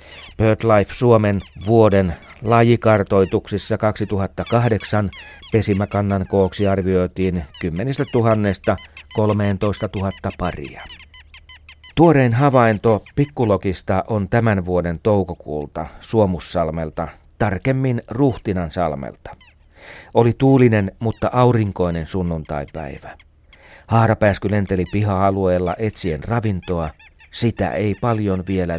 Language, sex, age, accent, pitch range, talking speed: Finnish, male, 40-59, native, 90-110 Hz, 75 wpm